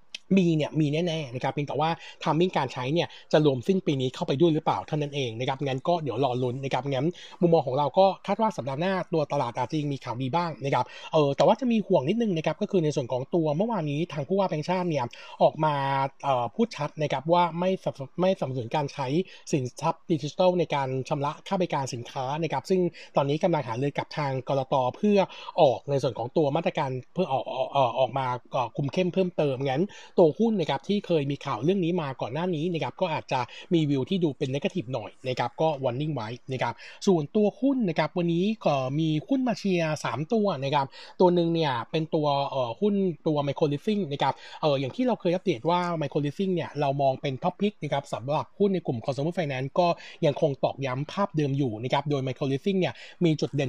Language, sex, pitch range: Thai, male, 135-175 Hz